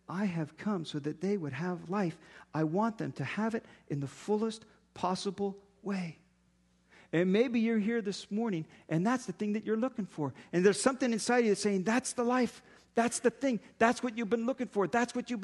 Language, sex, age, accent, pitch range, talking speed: English, male, 40-59, American, 190-255 Hz, 220 wpm